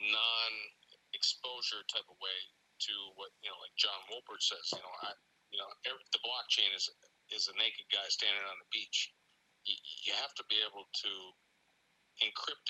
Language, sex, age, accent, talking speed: English, male, 50-69, American, 180 wpm